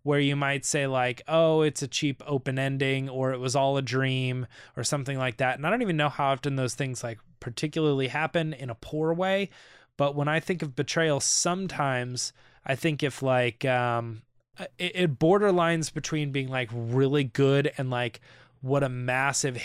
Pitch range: 130-160 Hz